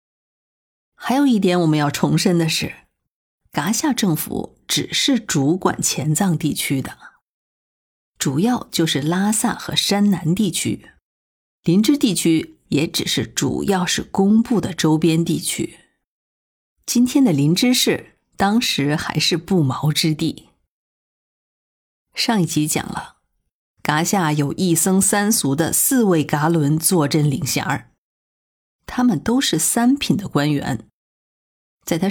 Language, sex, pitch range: Chinese, female, 155-215 Hz